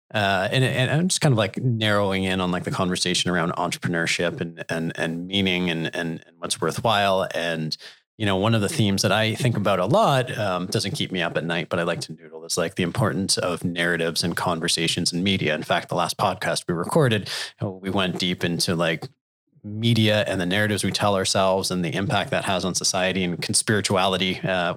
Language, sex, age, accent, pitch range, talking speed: English, male, 30-49, American, 90-115 Hz, 215 wpm